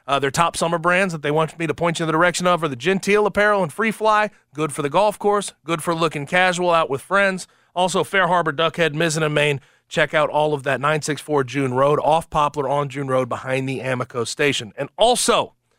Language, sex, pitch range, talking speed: English, male, 135-180 Hz, 230 wpm